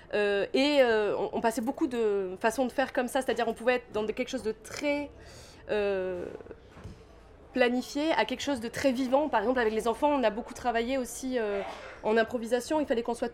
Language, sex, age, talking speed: French, female, 20-39, 210 wpm